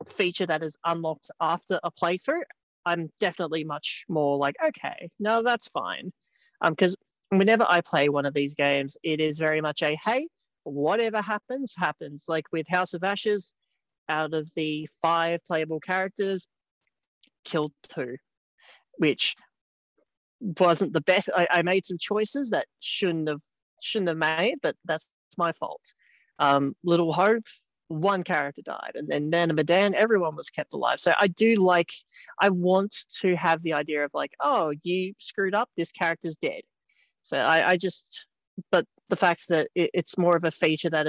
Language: English